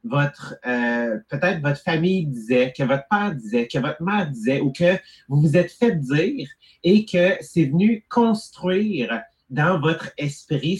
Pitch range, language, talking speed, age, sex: 135-190 Hz, English, 160 wpm, 30-49, male